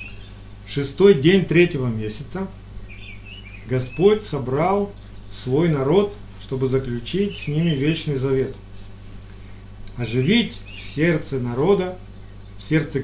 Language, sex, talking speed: Russian, male, 90 wpm